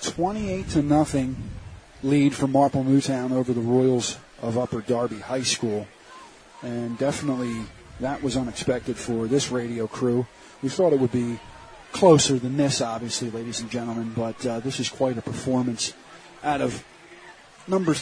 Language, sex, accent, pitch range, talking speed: English, male, American, 120-140 Hz, 155 wpm